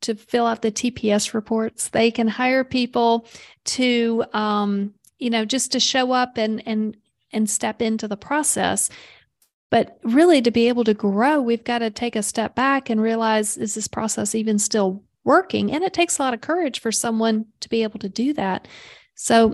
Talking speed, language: 195 wpm, English